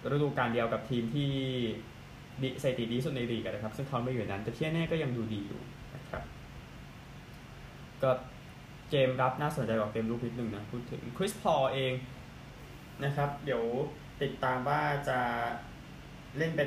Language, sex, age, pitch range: Thai, male, 20-39, 120-150 Hz